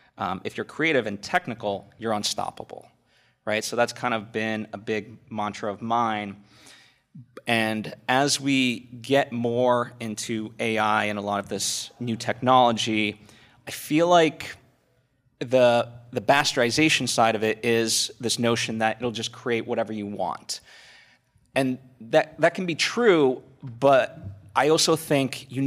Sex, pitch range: male, 110-135 Hz